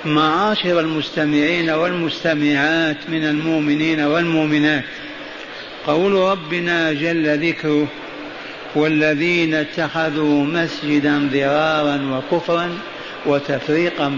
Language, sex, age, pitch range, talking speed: Arabic, male, 60-79, 145-165 Hz, 70 wpm